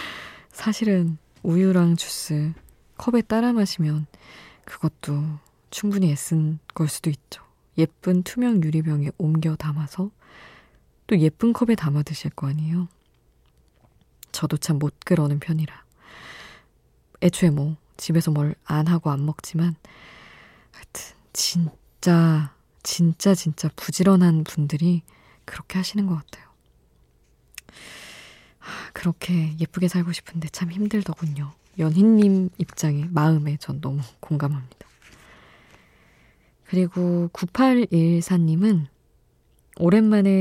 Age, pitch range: 20-39, 150-185 Hz